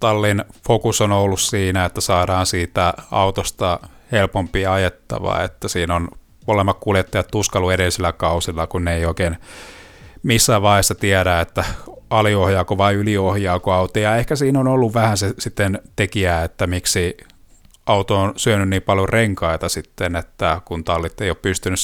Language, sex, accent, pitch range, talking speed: Finnish, male, native, 90-110 Hz, 150 wpm